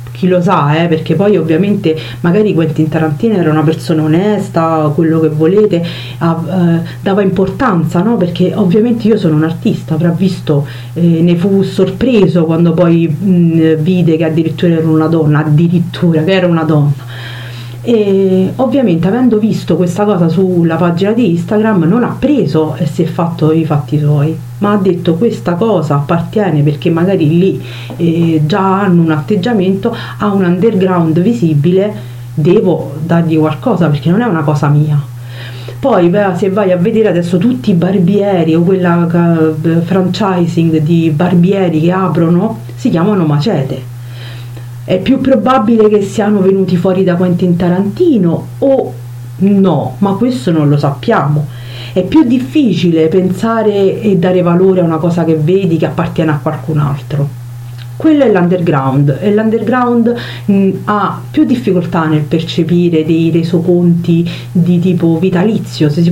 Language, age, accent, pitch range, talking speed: Italian, 40-59, native, 155-195 Hz, 150 wpm